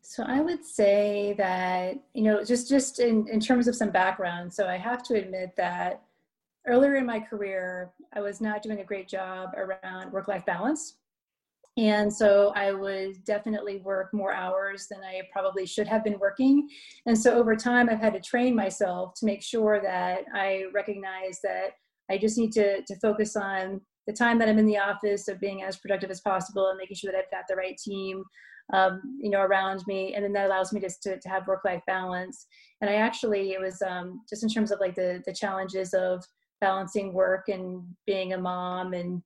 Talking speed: 205 wpm